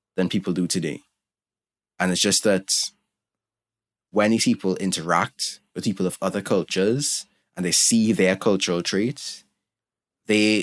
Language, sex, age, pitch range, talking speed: English, male, 20-39, 90-105 Hz, 135 wpm